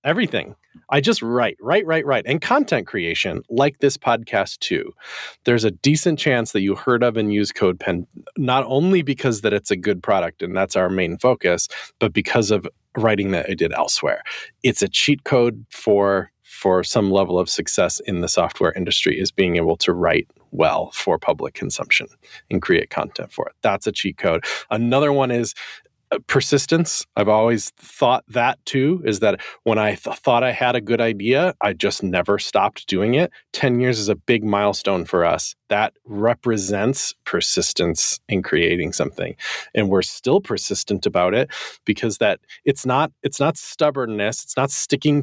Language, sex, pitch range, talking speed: English, male, 105-140 Hz, 180 wpm